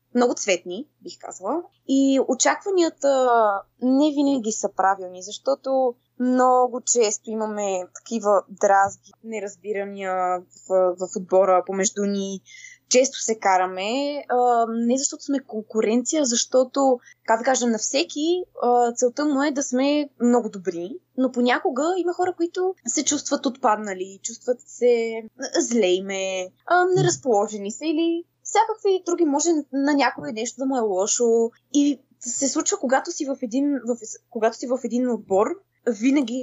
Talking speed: 135 wpm